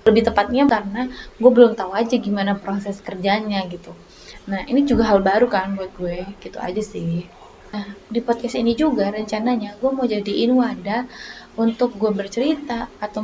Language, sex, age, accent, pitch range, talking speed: Indonesian, female, 20-39, native, 200-245 Hz, 165 wpm